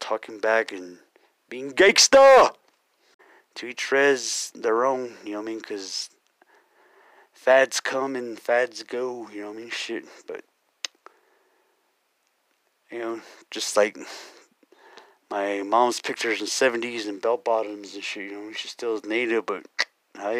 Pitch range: 105-135 Hz